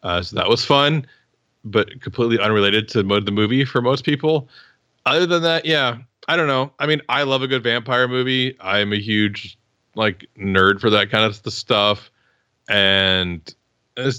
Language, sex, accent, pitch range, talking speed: English, male, American, 100-130 Hz, 185 wpm